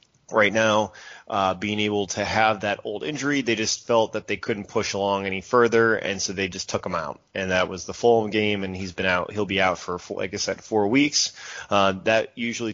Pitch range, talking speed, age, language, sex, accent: 95-110 Hz, 235 wpm, 20-39, English, male, American